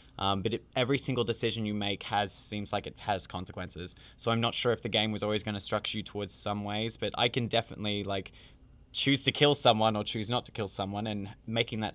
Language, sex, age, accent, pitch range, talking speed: English, male, 20-39, Australian, 100-120 Hz, 240 wpm